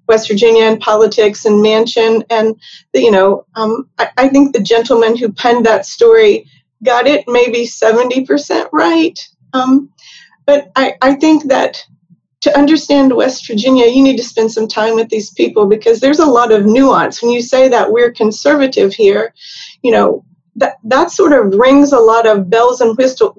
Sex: female